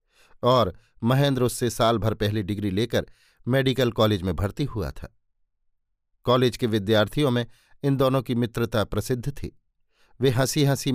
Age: 50-69